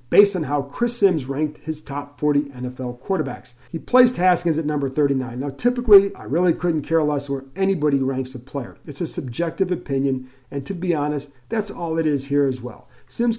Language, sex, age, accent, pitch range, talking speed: English, male, 40-59, American, 130-175 Hz, 200 wpm